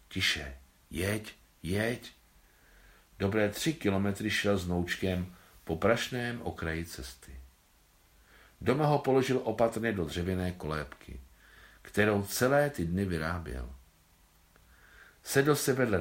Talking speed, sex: 105 wpm, male